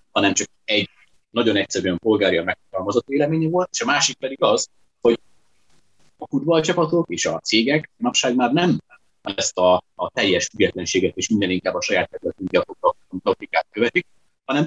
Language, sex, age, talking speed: Hungarian, male, 30-49, 155 wpm